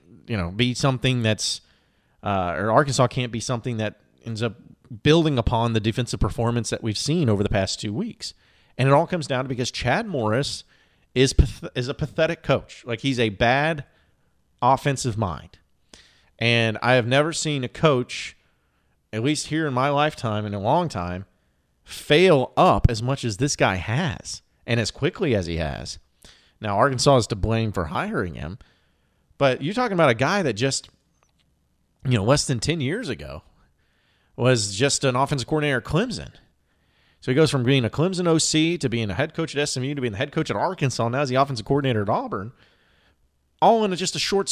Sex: male